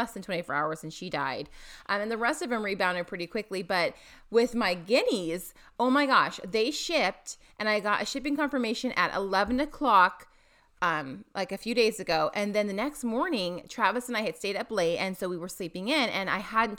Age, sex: 30-49, female